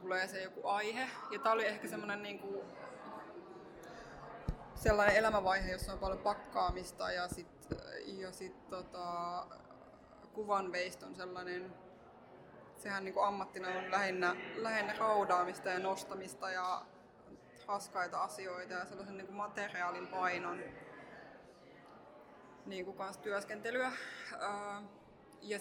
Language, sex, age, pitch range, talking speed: Finnish, female, 20-39, 185-200 Hz, 105 wpm